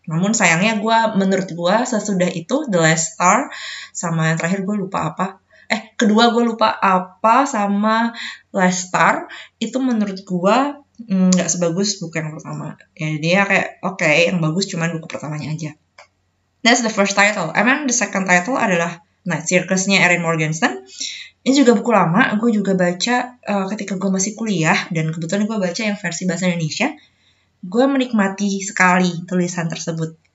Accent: native